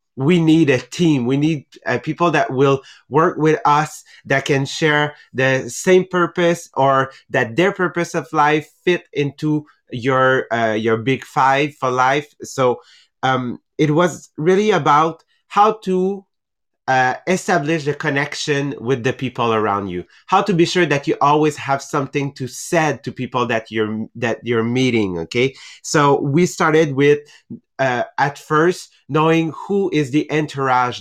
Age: 30-49